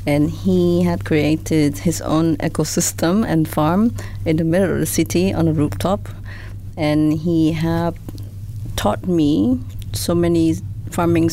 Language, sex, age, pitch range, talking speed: English, female, 30-49, 105-160 Hz, 140 wpm